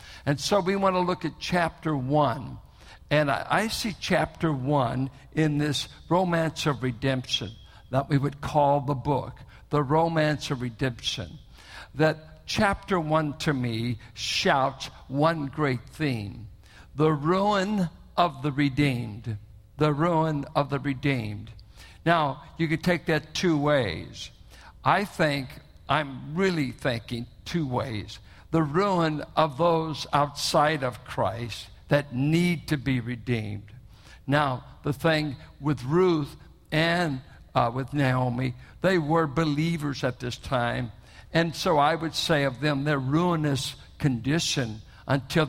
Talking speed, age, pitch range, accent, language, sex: 130 wpm, 60-79, 125-155 Hz, American, English, male